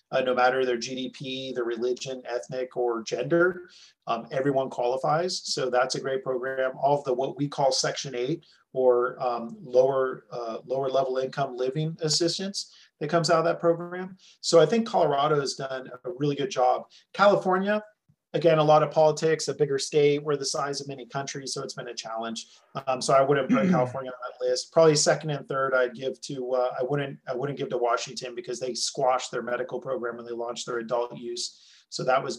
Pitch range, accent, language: 130-160 Hz, American, English